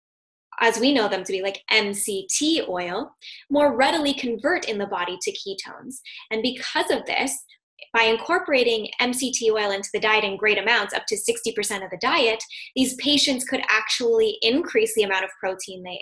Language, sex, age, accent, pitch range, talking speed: English, female, 10-29, American, 210-300 Hz, 175 wpm